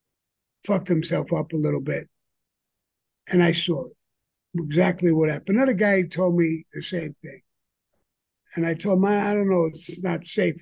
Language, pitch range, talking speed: English, 160-185 Hz, 165 wpm